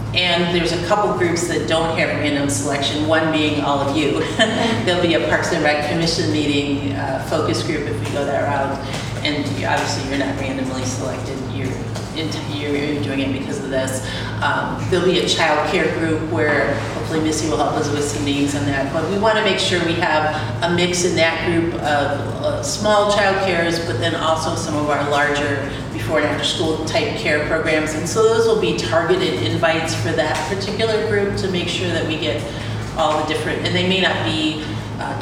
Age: 40-59